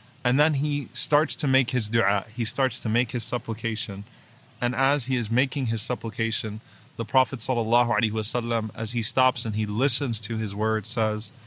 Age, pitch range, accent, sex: 20-39, 115-130 Hz, American, male